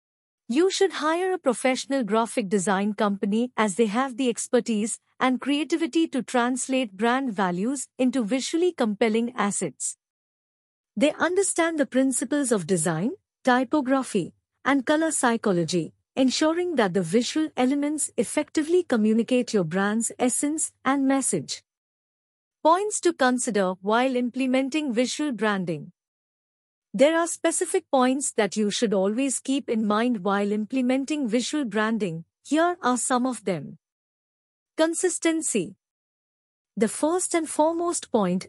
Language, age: English, 50-69